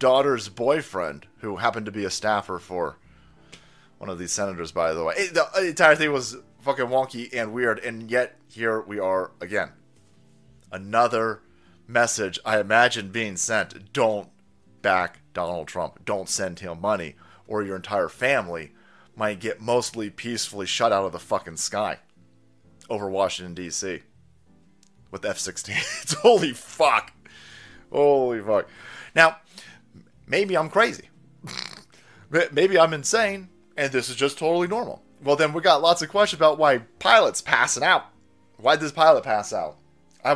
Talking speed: 145 wpm